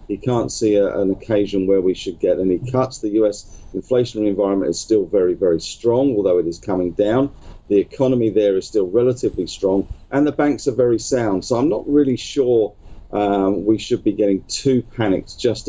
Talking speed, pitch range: 195 wpm, 95-115 Hz